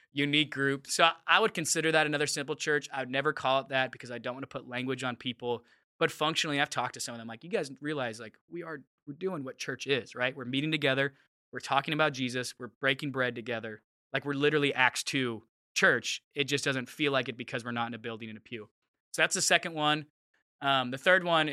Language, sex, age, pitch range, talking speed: English, male, 20-39, 120-145 Hz, 245 wpm